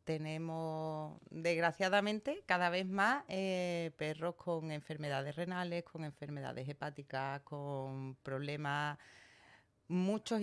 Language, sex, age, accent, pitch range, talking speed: Spanish, female, 30-49, Spanish, 145-180 Hz, 90 wpm